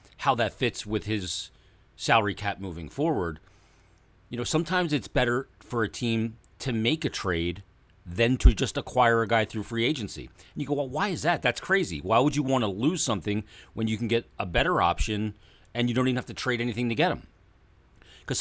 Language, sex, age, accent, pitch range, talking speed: English, male, 40-59, American, 95-125 Hz, 210 wpm